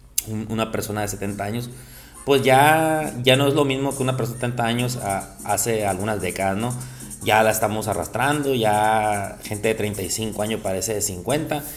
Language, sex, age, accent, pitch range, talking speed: Spanish, male, 30-49, Mexican, 105-140 Hz, 180 wpm